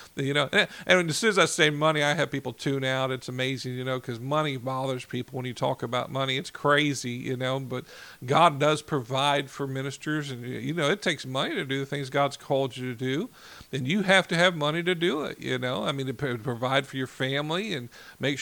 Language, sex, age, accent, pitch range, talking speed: English, male, 50-69, American, 135-165 Hz, 235 wpm